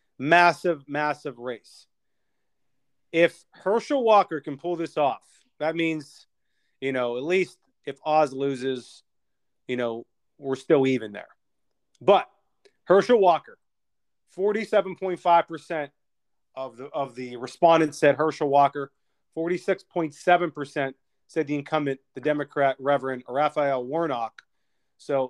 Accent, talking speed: American, 110 wpm